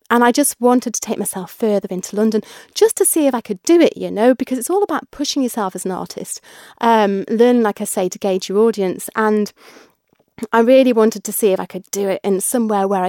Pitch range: 195-235 Hz